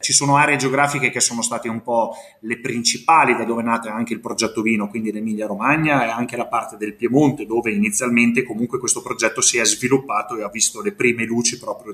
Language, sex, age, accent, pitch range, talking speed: Italian, male, 30-49, native, 115-145 Hz, 215 wpm